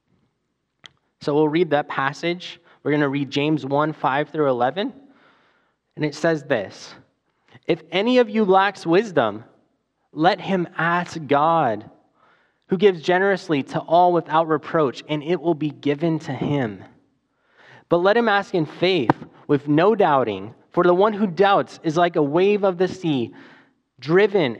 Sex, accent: male, American